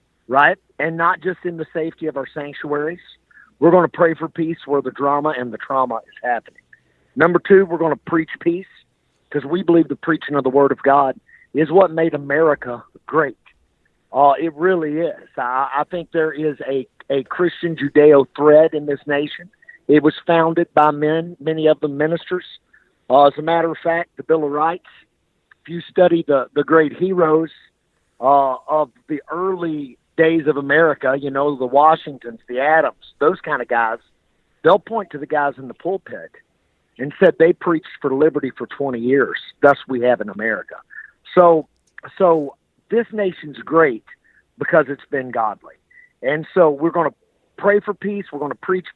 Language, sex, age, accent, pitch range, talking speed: English, male, 50-69, American, 140-170 Hz, 180 wpm